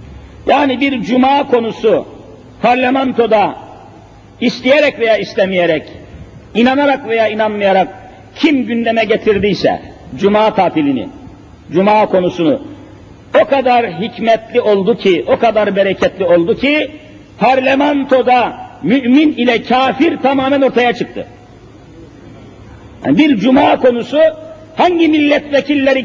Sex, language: male, Turkish